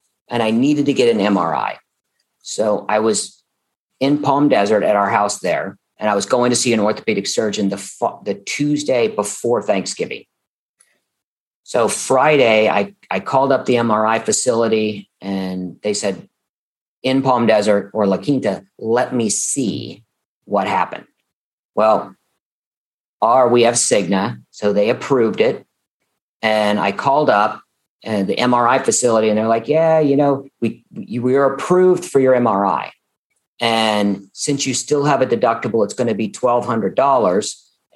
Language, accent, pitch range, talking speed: English, American, 105-135 Hz, 150 wpm